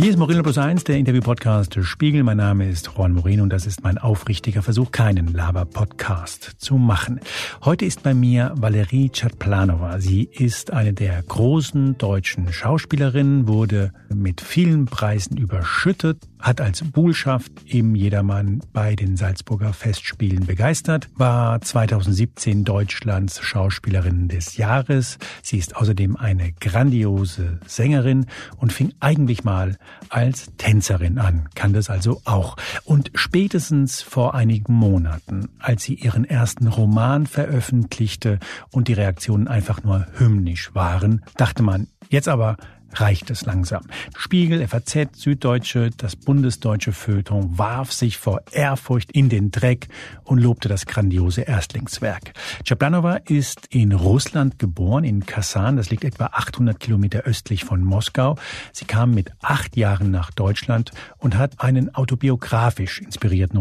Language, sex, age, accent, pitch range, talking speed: German, male, 50-69, German, 100-130 Hz, 135 wpm